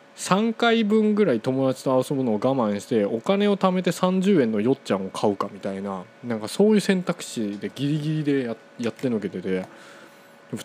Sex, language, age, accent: male, Japanese, 20-39, native